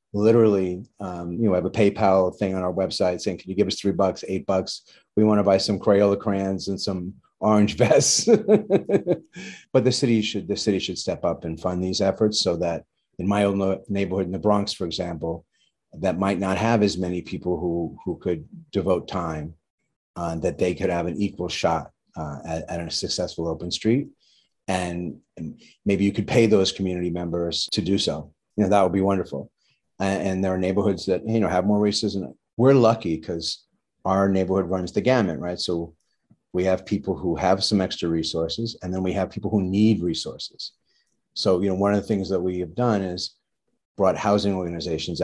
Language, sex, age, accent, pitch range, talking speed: English, male, 30-49, American, 90-105 Hz, 200 wpm